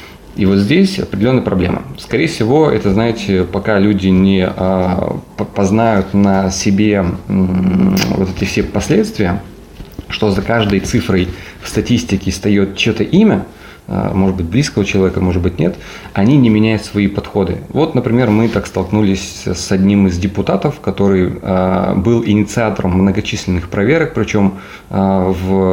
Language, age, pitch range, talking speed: Russian, 20-39, 95-115 Hz, 130 wpm